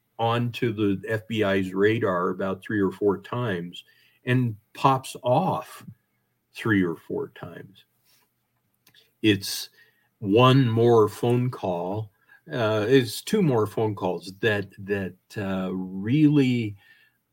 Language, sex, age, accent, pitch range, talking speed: English, male, 50-69, American, 95-110 Hz, 105 wpm